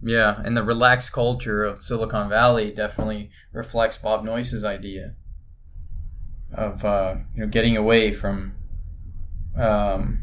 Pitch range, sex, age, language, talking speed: 100-125 Hz, male, 20-39, English, 125 wpm